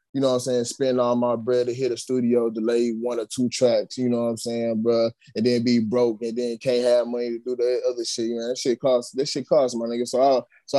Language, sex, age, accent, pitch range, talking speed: English, male, 20-39, American, 115-125 Hz, 290 wpm